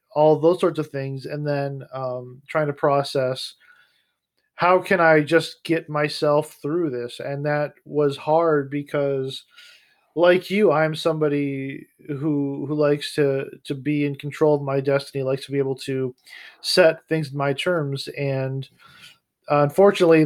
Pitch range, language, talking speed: 140-165 Hz, English, 150 wpm